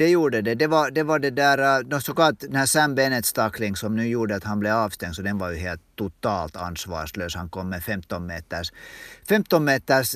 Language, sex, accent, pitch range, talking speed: Swedish, male, Finnish, 95-135 Hz, 205 wpm